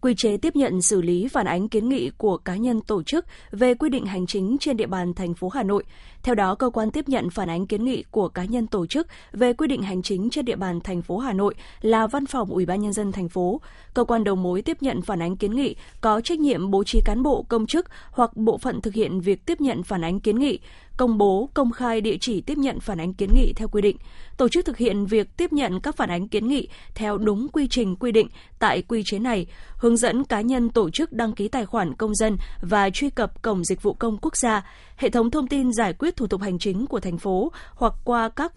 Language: Vietnamese